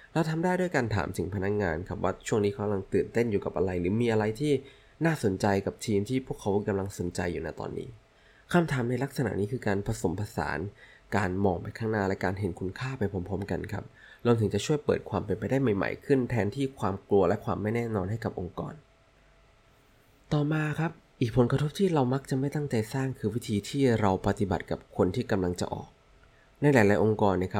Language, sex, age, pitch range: Thai, male, 20-39, 95-130 Hz